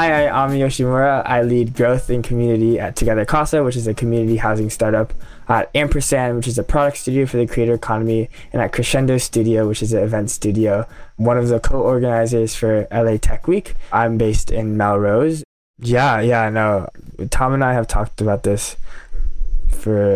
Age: 20-39